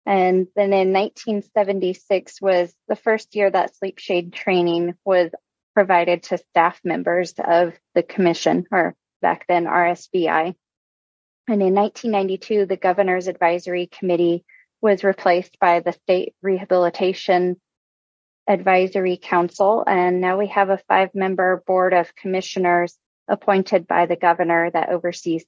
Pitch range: 175-195 Hz